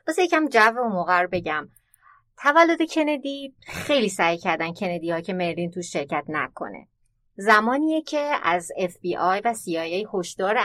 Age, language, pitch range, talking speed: 30-49, Persian, 165-225 Hz, 135 wpm